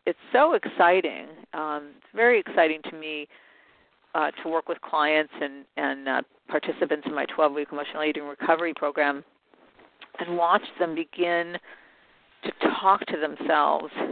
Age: 50-69